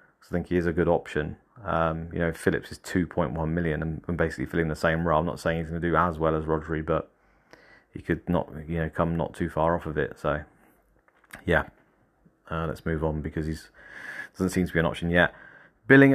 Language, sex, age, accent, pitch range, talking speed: English, male, 30-49, British, 85-105 Hz, 230 wpm